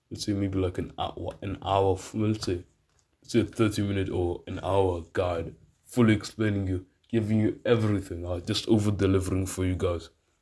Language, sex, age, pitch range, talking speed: English, male, 20-39, 95-110 Hz, 185 wpm